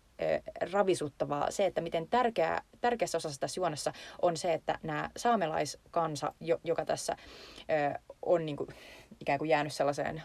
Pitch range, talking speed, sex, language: 155-200 Hz, 140 wpm, female, Finnish